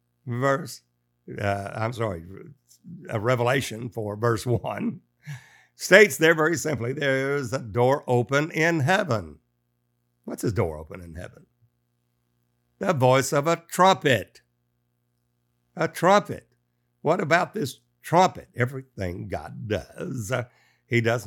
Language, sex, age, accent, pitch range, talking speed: English, male, 60-79, American, 85-130 Hz, 120 wpm